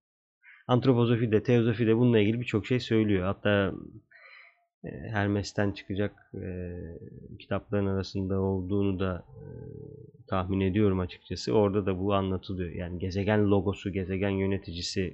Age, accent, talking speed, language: 30-49, native, 110 wpm, Turkish